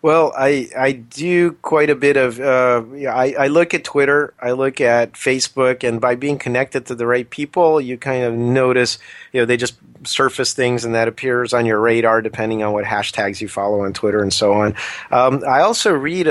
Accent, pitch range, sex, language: American, 120-145 Hz, male, English